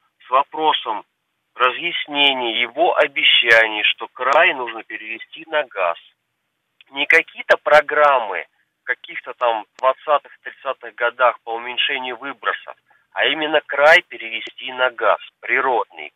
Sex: male